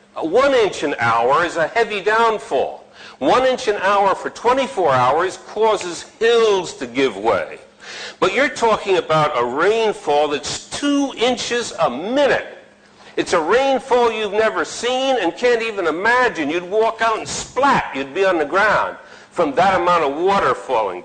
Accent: American